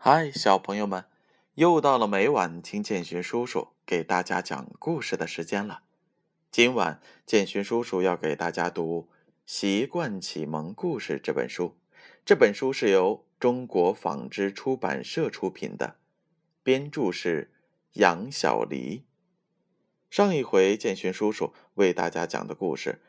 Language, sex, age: Chinese, male, 20-39